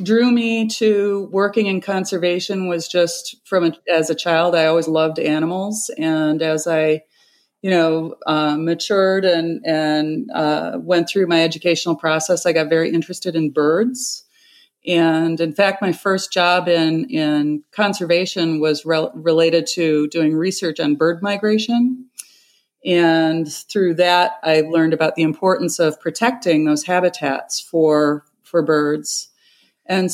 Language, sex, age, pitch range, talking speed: English, female, 30-49, 165-205 Hz, 145 wpm